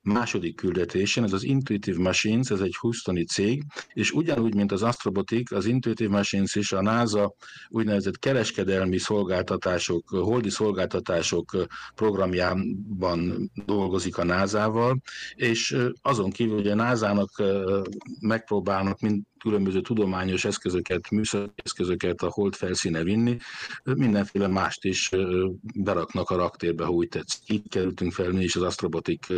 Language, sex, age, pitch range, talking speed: Hungarian, male, 50-69, 90-110 Hz, 125 wpm